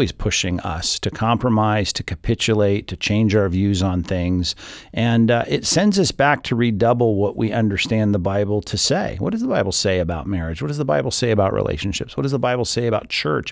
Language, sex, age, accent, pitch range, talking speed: English, male, 50-69, American, 100-125 Hz, 215 wpm